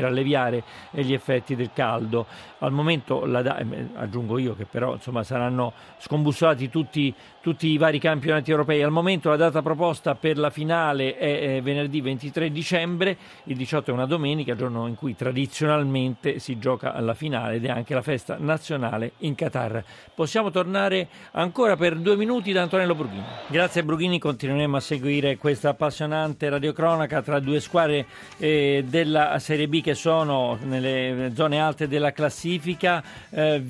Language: Italian